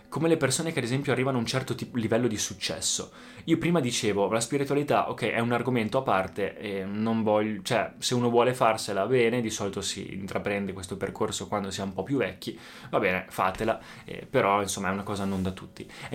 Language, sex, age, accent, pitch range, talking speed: Italian, male, 20-39, native, 105-135 Hz, 225 wpm